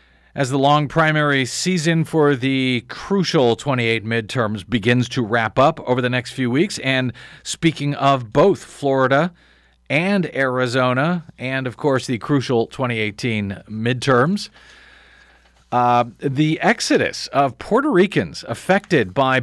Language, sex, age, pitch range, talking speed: English, male, 40-59, 125-170 Hz, 125 wpm